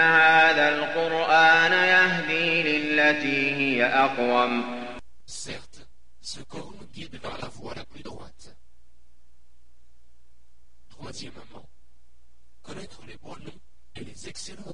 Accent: French